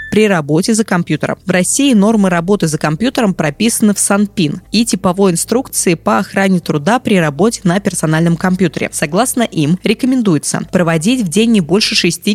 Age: 20-39